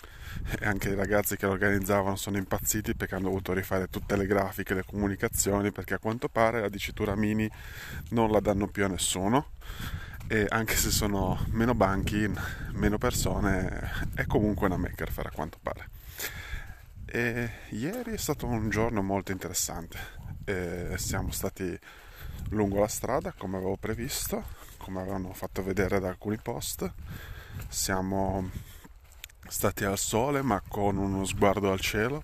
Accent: native